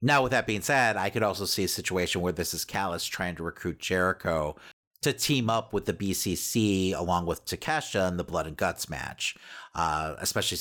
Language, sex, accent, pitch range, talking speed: English, male, American, 85-110 Hz, 205 wpm